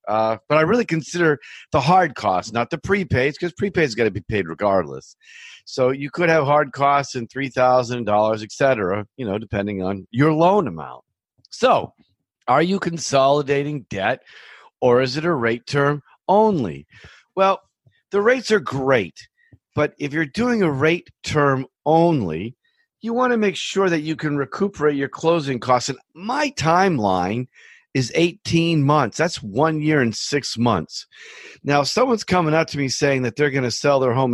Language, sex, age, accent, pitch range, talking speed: English, male, 50-69, American, 130-180 Hz, 175 wpm